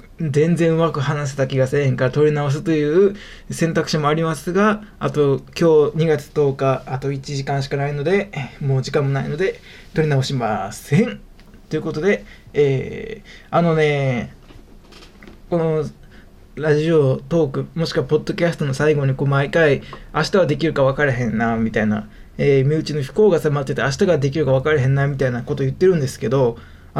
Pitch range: 140-180 Hz